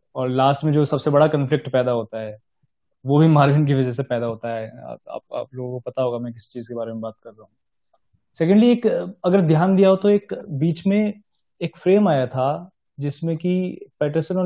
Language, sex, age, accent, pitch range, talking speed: Hindi, male, 20-39, native, 130-155 Hz, 150 wpm